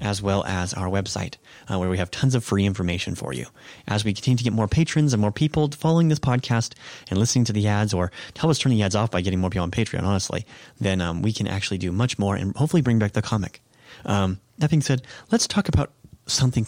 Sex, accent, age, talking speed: male, American, 30-49, 250 wpm